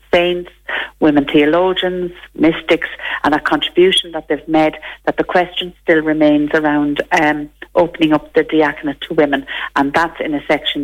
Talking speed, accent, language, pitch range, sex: 155 wpm, Irish, English, 155-180 Hz, female